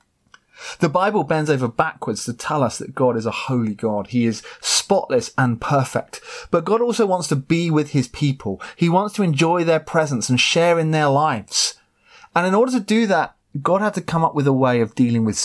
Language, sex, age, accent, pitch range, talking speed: English, male, 30-49, British, 115-165 Hz, 220 wpm